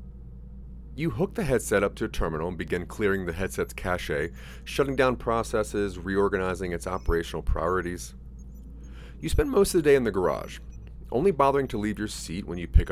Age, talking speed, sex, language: 30-49, 180 wpm, male, English